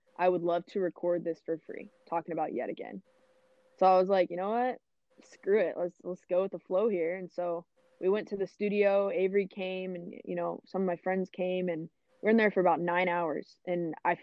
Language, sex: English, female